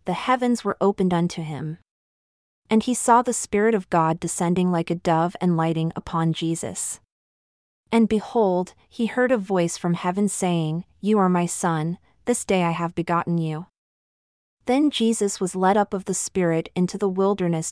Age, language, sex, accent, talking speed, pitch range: 30-49, English, female, American, 175 wpm, 170-210 Hz